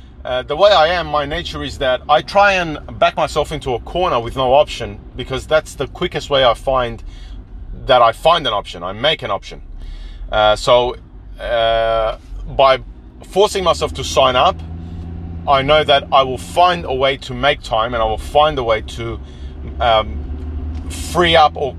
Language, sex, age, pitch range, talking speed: English, male, 30-49, 95-155 Hz, 185 wpm